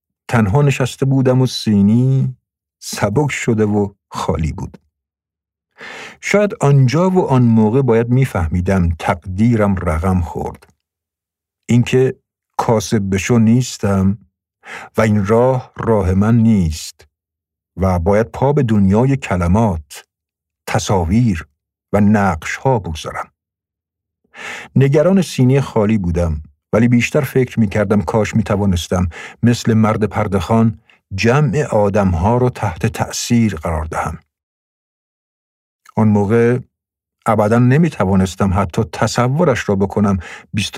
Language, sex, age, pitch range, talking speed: Persian, male, 50-69, 95-115 Hz, 110 wpm